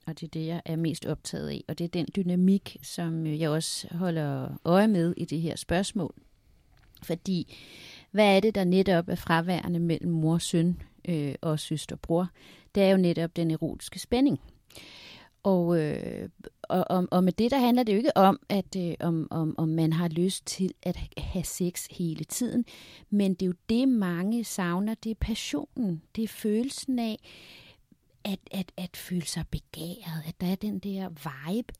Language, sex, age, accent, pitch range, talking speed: Danish, female, 30-49, native, 160-200 Hz, 185 wpm